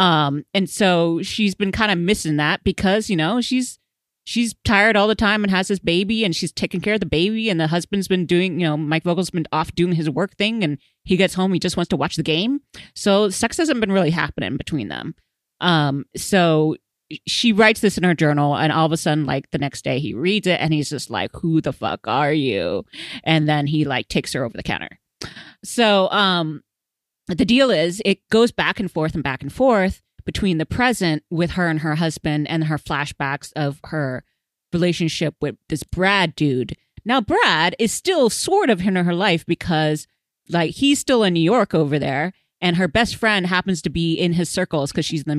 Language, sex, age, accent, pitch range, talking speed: English, female, 30-49, American, 155-200 Hz, 220 wpm